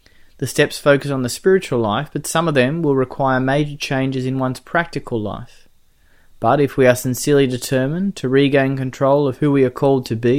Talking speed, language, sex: 200 wpm, English, male